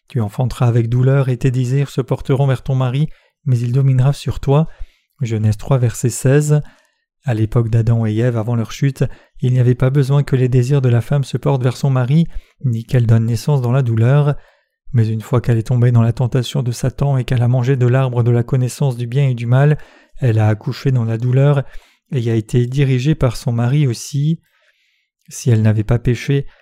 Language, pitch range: French, 120-140 Hz